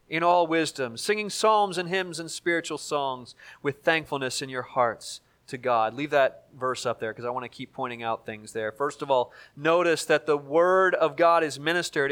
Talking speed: 210 wpm